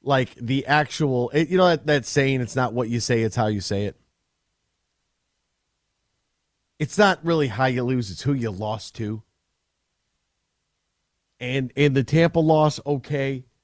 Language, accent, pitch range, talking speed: English, American, 110-145 Hz, 155 wpm